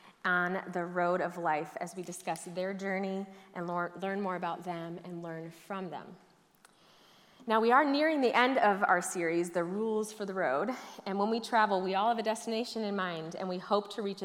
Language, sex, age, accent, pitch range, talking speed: English, female, 30-49, American, 180-215 Hz, 205 wpm